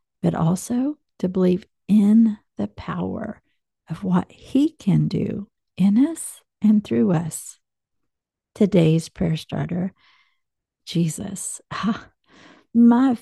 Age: 50-69